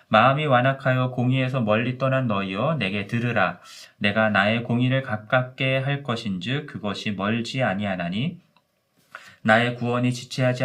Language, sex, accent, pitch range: Korean, male, native, 105-135 Hz